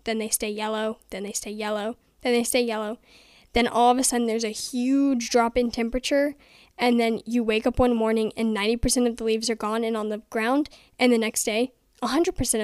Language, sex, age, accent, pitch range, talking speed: English, female, 10-29, American, 225-270 Hz, 220 wpm